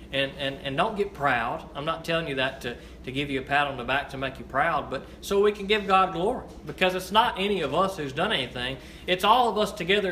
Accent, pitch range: American, 165-210 Hz